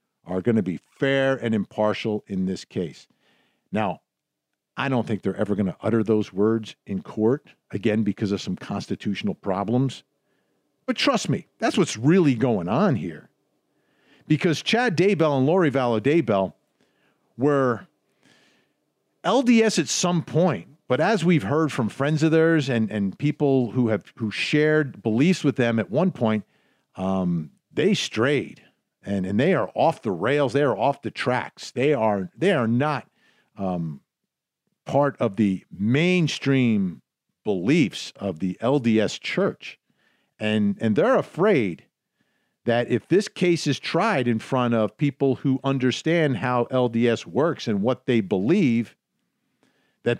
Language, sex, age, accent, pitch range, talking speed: English, male, 50-69, American, 110-150 Hz, 150 wpm